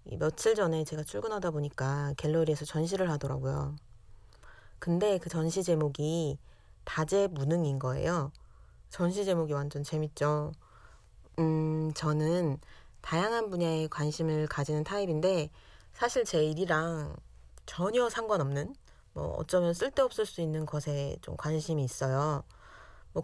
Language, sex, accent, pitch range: Korean, female, native, 145-175 Hz